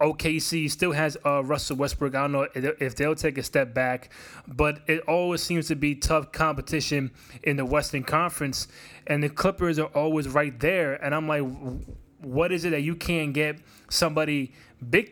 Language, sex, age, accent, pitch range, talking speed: English, male, 20-39, American, 140-165 Hz, 190 wpm